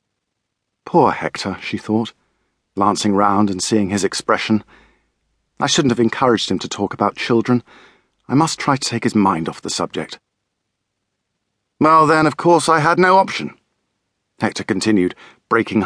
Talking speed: 150 wpm